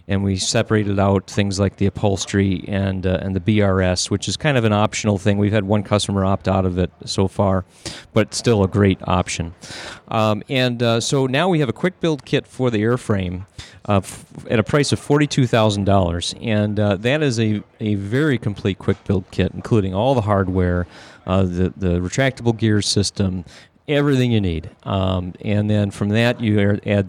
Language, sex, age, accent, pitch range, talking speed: English, male, 40-59, American, 95-115 Hz, 190 wpm